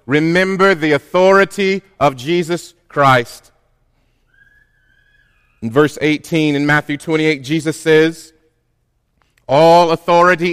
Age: 40-59